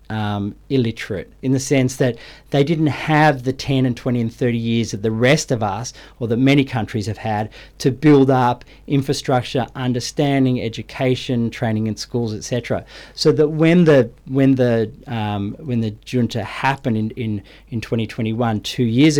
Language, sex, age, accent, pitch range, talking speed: English, male, 40-59, Australian, 110-140 Hz, 170 wpm